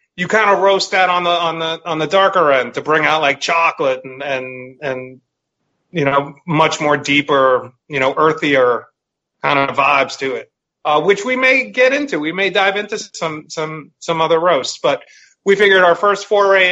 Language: English